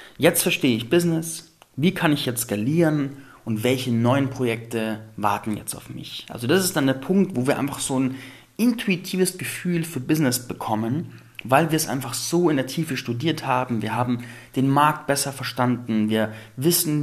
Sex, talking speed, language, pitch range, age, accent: male, 180 wpm, German, 115-150 Hz, 30-49, German